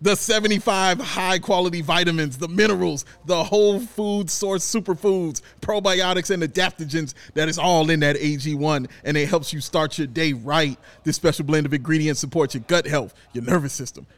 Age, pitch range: 30-49, 155-235 Hz